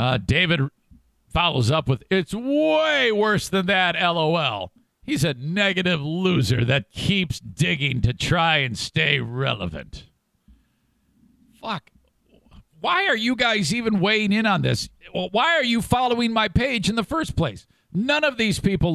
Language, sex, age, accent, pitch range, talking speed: English, male, 50-69, American, 140-200 Hz, 150 wpm